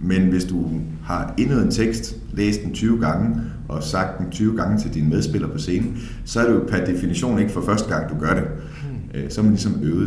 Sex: male